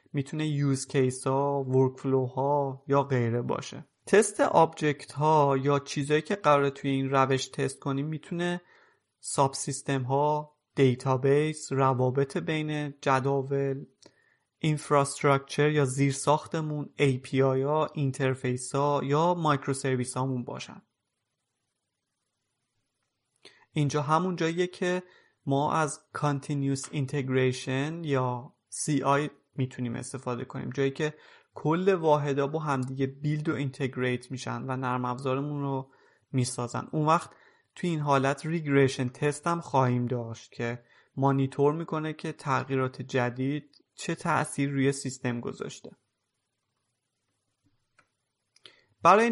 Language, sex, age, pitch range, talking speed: Persian, male, 30-49, 130-150 Hz, 110 wpm